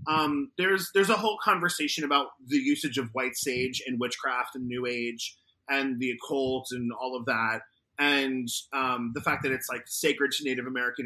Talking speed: 190 wpm